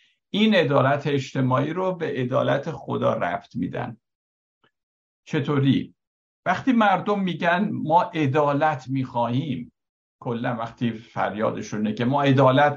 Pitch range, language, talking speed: 120-170 Hz, Persian, 105 wpm